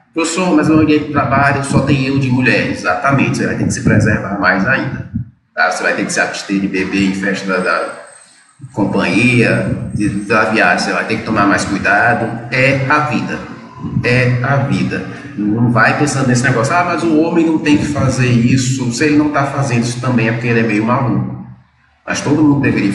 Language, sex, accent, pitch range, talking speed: Portuguese, male, Brazilian, 115-140 Hz, 205 wpm